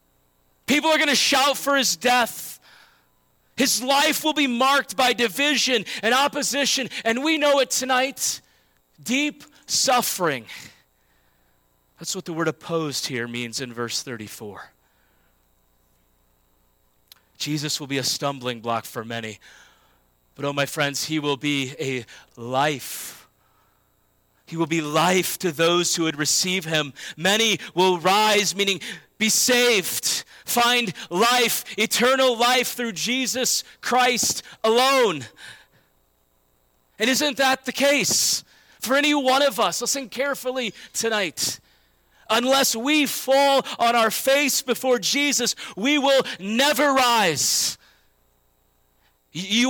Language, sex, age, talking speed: English, male, 30-49, 120 wpm